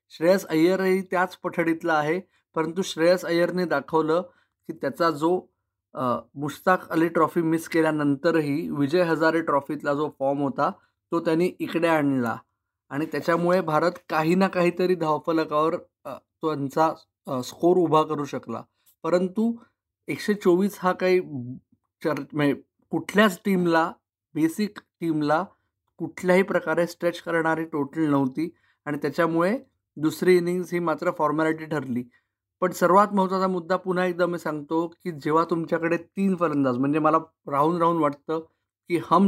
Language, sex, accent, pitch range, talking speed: Marathi, male, native, 145-175 Hz, 125 wpm